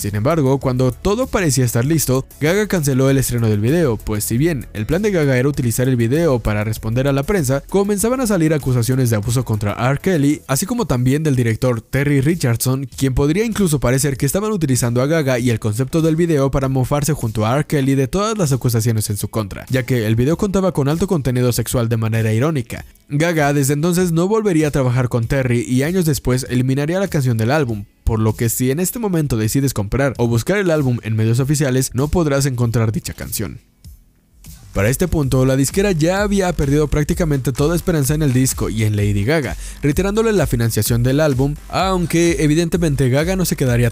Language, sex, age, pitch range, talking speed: Spanish, male, 20-39, 120-160 Hz, 205 wpm